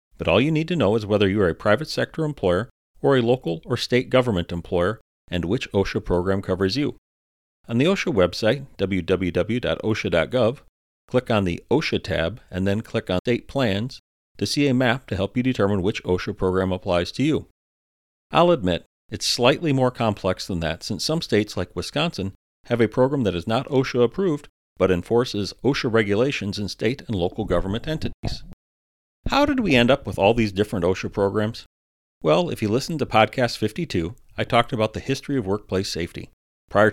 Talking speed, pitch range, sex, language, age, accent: 185 wpm, 95-125 Hz, male, English, 40-59, American